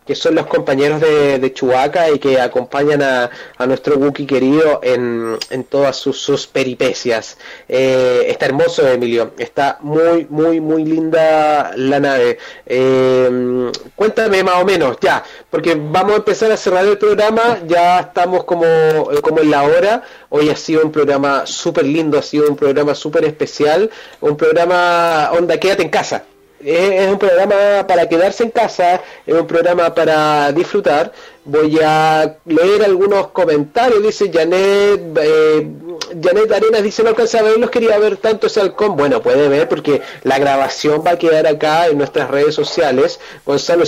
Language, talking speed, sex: Spanish, 165 wpm, male